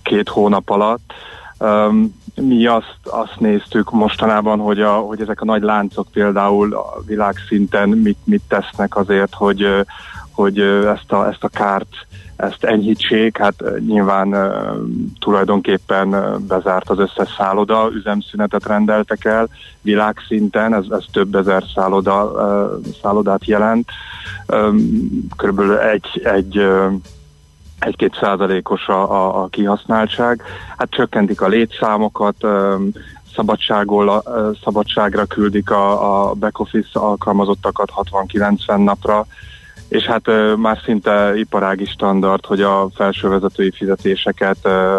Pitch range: 95-105 Hz